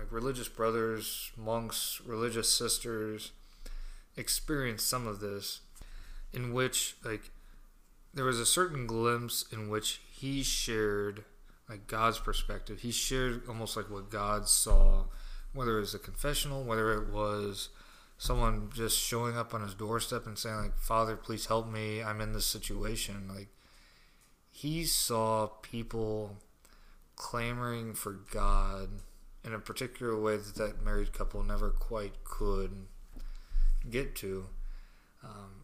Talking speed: 135 wpm